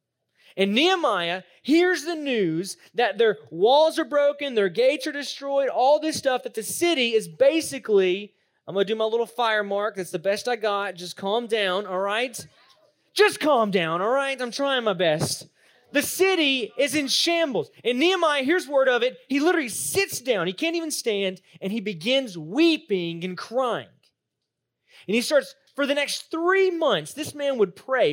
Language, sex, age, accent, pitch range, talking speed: English, male, 30-49, American, 200-300 Hz, 185 wpm